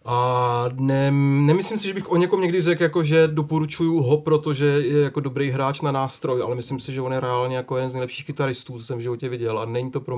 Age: 30-49